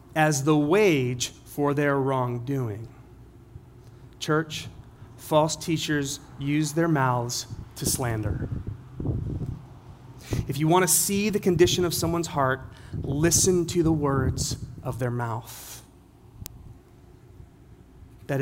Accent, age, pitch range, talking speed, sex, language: American, 30-49, 120-155 Hz, 100 wpm, male, English